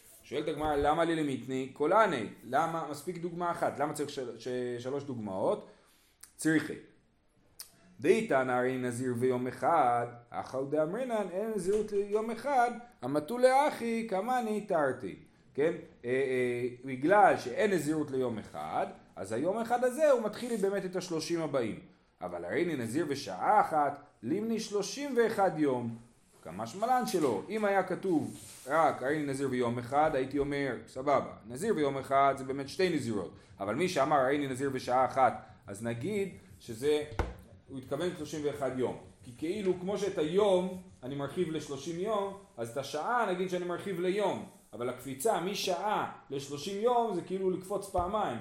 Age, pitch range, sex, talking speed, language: 30-49, 130-195 Hz, male, 150 wpm, Hebrew